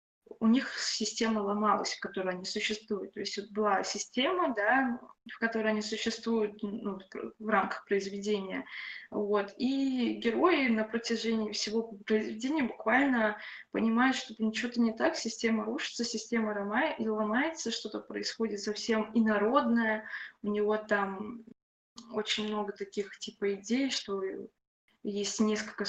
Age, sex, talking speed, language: 20-39, female, 130 wpm, Russian